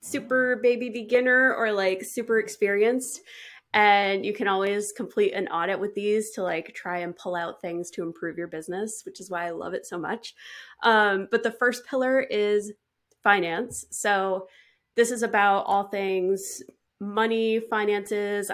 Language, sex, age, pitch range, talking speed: English, female, 20-39, 185-225 Hz, 160 wpm